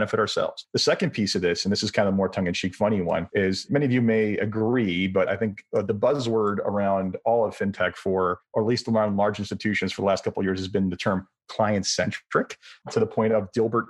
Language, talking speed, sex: English, 235 wpm, male